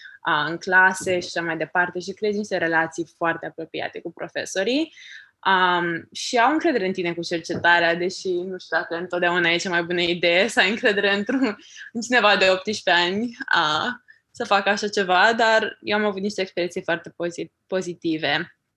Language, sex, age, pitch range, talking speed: Romanian, female, 20-39, 170-210 Hz, 170 wpm